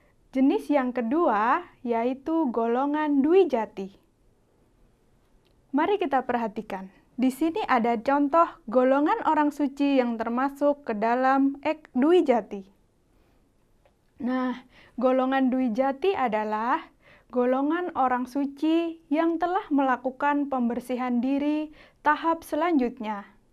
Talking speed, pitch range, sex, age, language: 95 wpm, 240-290 Hz, female, 20-39, Indonesian